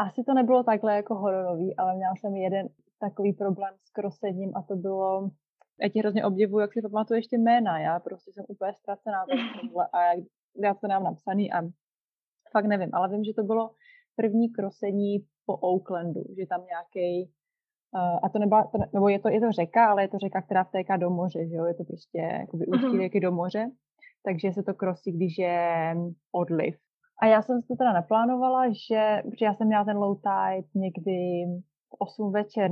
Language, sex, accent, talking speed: Czech, female, native, 190 wpm